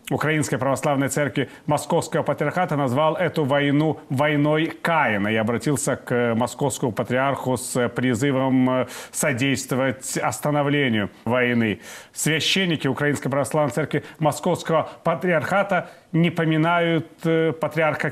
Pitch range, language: 135-160 Hz, Russian